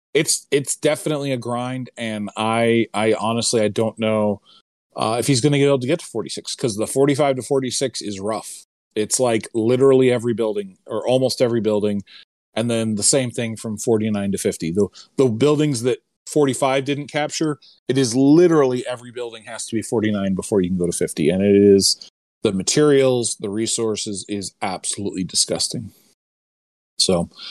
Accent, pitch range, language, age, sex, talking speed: American, 110-140 Hz, English, 30-49, male, 175 wpm